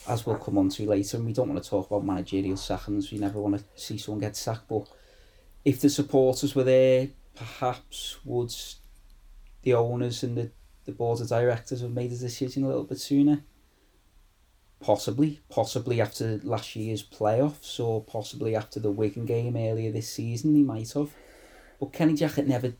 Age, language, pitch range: 20-39, English, 100-130 Hz